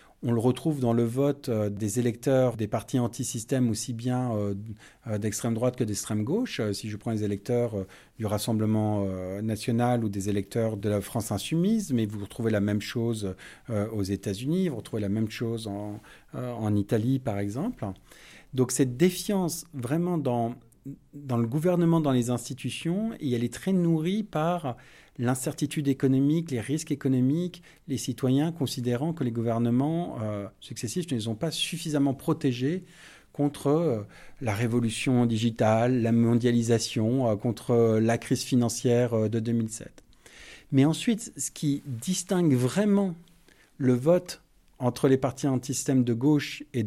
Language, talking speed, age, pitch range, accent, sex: English, 150 wpm, 40-59, 115-150 Hz, French, male